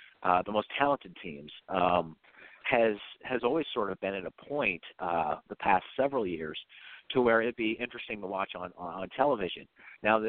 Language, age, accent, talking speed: English, 50-69, American, 180 wpm